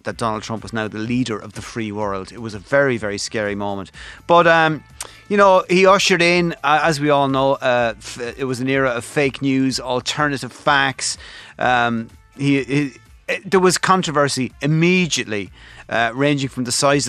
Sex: male